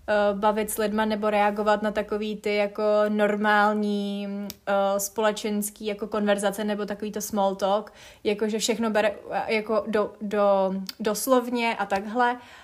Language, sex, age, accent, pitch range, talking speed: Czech, female, 20-39, native, 205-235 Hz, 130 wpm